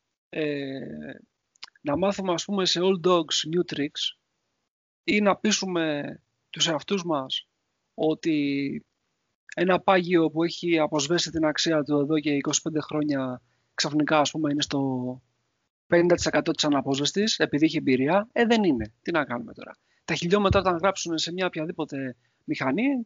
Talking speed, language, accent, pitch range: 145 wpm, Greek, Spanish, 145-190 Hz